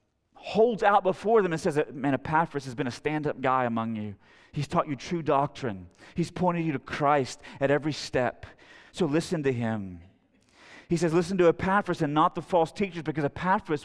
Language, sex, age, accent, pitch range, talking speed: English, male, 30-49, American, 150-195 Hz, 190 wpm